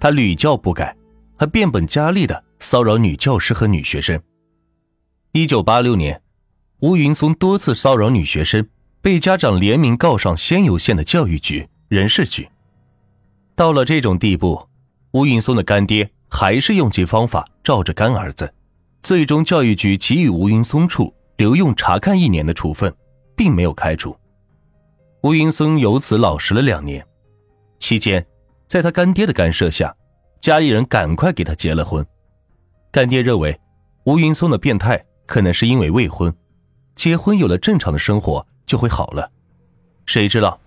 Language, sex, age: Chinese, male, 30-49